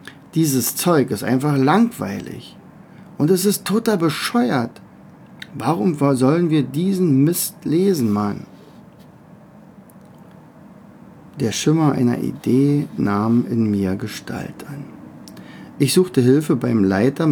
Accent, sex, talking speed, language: German, male, 105 wpm, German